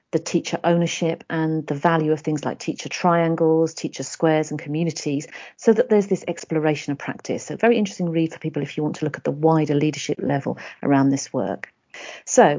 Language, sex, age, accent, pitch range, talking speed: English, female, 50-69, British, 155-205 Hz, 200 wpm